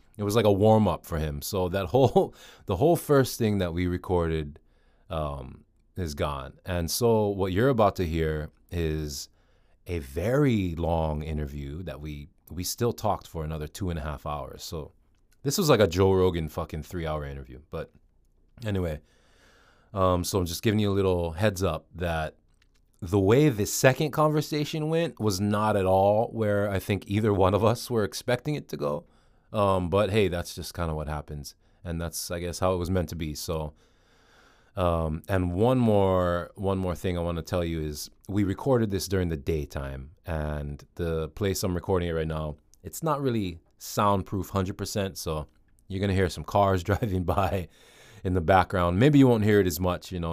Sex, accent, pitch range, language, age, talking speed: male, American, 80-105 Hz, English, 30-49, 195 wpm